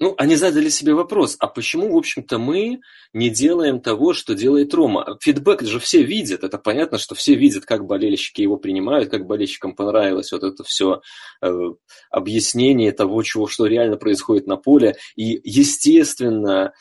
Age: 20-39